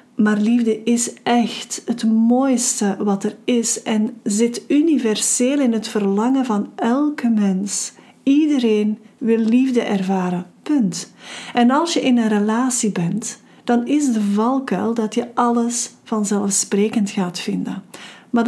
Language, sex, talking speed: Dutch, female, 135 wpm